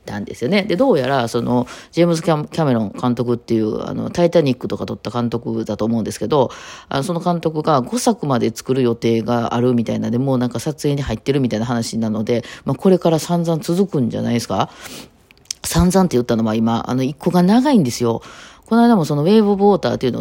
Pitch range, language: 120-180 Hz, Japanese